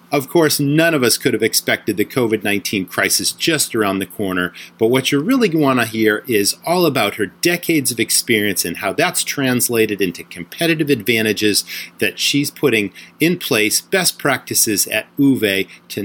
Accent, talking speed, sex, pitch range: American, 175 wpm, male, 105-145 Hz